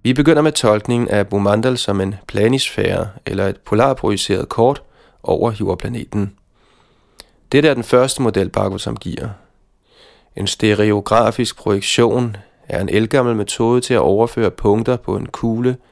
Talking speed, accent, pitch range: 135 wpm, native, 105-125 Hz